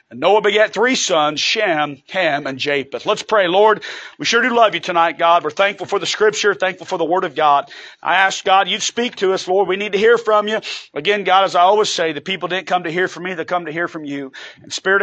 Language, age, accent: English, 40-59, American